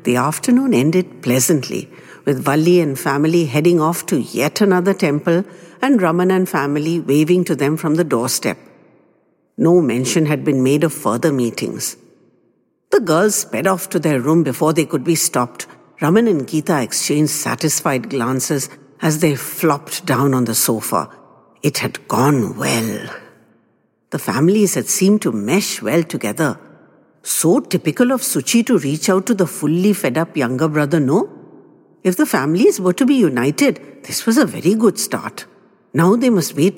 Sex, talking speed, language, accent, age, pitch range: female, 165 wpm, English, Indian, 60-79, 150-235 Hz